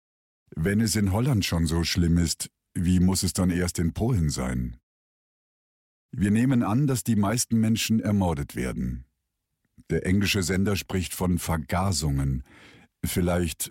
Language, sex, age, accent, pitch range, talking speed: German, male, 50-69, German, 80-105 Hz, 140 wpm